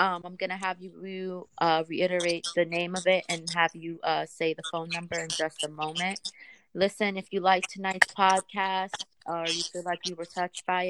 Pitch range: 160-180 Hz